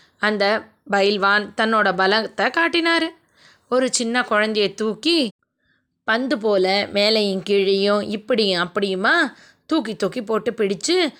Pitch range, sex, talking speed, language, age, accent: 210-300 Hz, female, 100 wpm, Tamil, 20-39, native